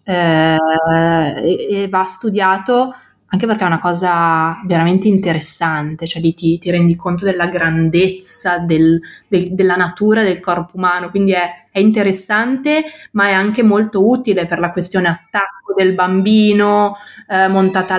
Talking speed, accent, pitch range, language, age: 145 wpm, native, 175-205 Hz, Italian, 20-39